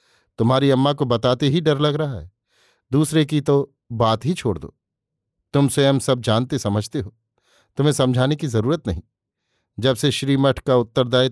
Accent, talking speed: native, 170 wpm